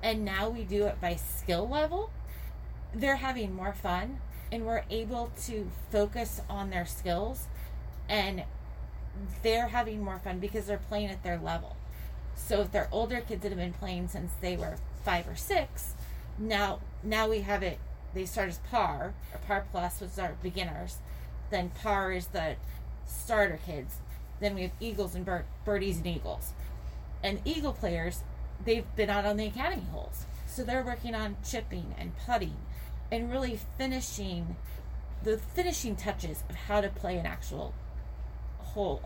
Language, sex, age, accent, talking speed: English, female, 30-49, American, 160 wpm